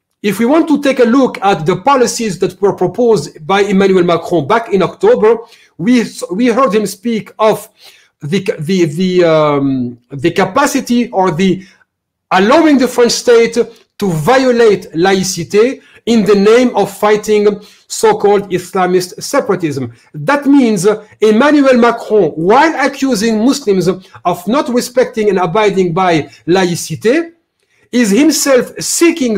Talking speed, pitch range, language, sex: 135 wpm, 190-245 Hz, Turkish, male